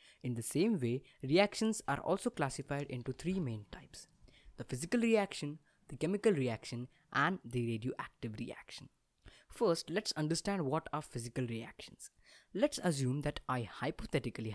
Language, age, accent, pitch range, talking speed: English, 20-39, Indian, 120-185 Hz, 140 wpm